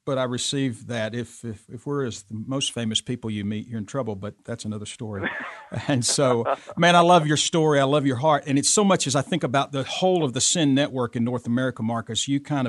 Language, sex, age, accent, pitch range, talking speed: English, male, 50-69, American, 115-145 Hz, 250 wpm